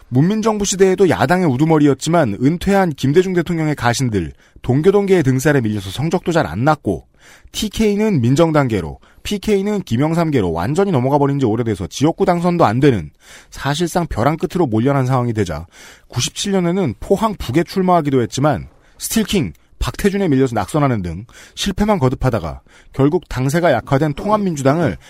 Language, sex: Korean, male